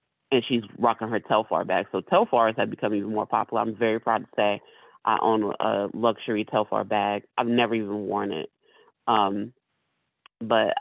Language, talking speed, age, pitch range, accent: English, 170 wpm, 30-49, 110-140 Hz, American